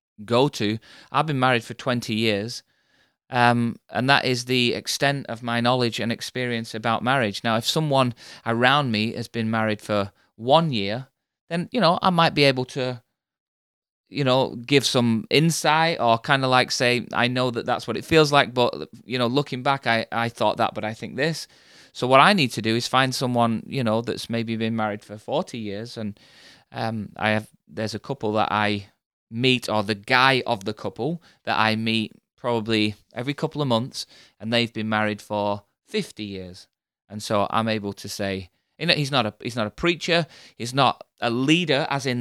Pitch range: 110-135 Hz